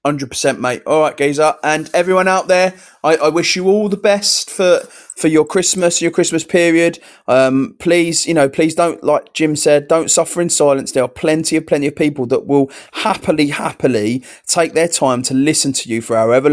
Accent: British